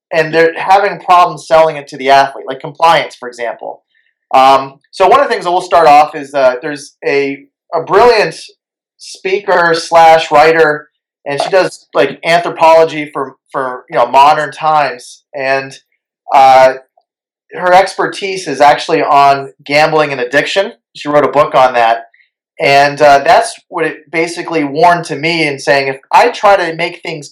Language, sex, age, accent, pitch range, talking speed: English, male, 30-49, American, 140-170 Hz, 165 wpm